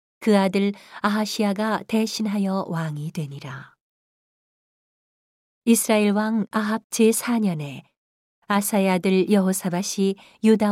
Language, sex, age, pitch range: Korean, female, 40-59, 185-220 Hz